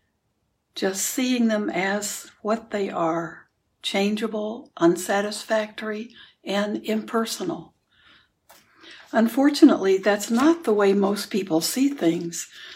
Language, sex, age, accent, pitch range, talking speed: English, female, 60-79, American, 180-225 Hz, 95 wpm